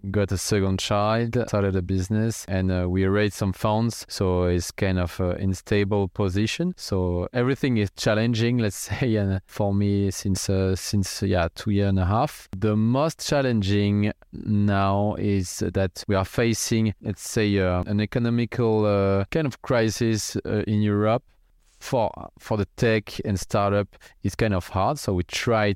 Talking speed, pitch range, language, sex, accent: 170 wpm, 95-110 Hz, English, male, French